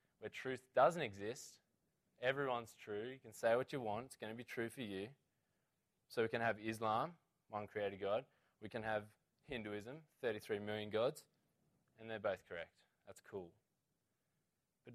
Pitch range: 105-140 Hz